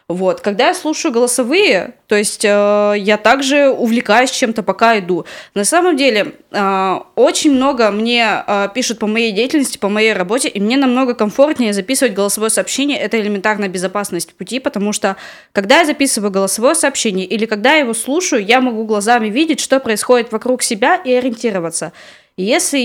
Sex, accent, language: female, native, Russian